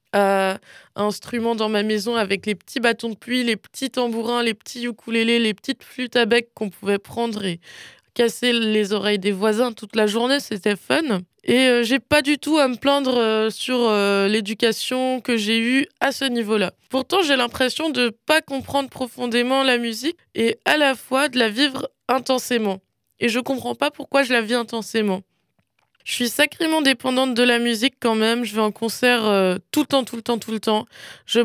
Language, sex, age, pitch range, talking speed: French, female, 20-39, 220-265 Hz, 200 wpm